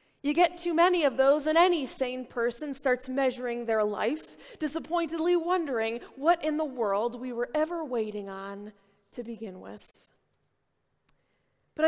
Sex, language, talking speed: female, English, 145 wpm